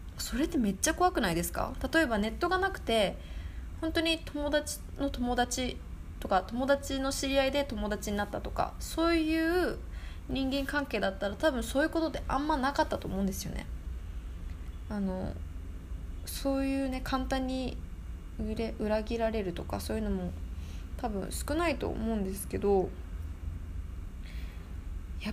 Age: 20-39